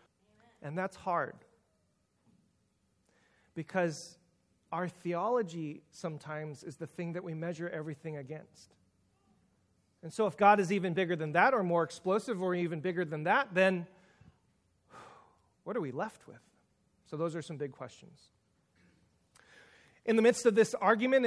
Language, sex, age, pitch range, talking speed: English, male, 40-59, 165-210 Hz, 140 wpm